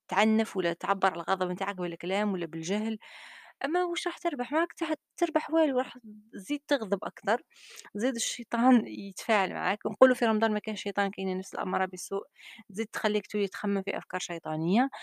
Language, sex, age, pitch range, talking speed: Arabic, female, 20-39, 180-220 Hz, 165 wpm